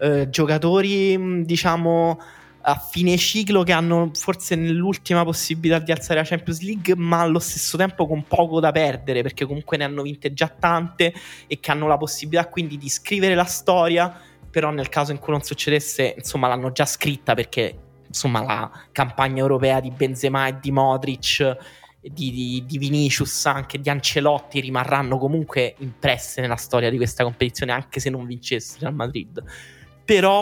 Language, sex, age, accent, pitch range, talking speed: Italian, male, 20-39, native, 130-160 Hz, 160 wpm